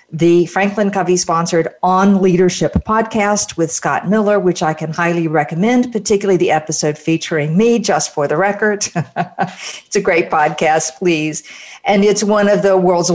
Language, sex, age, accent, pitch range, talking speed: English, female, 50-69, American, 155-200 Hz, 155 wpm